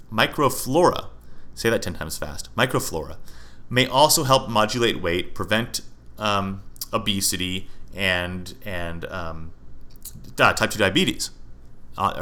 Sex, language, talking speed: male, English, 110 wpm